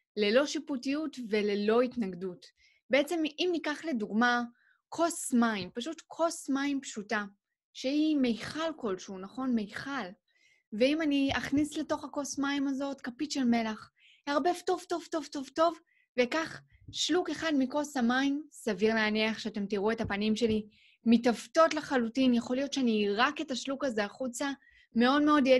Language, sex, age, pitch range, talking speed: Hebrew, female, 20-39, 220-290 Hz, 140 wpm